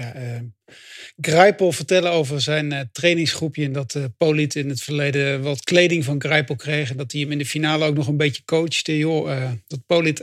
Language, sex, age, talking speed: English, male, 50-69, 205 wpm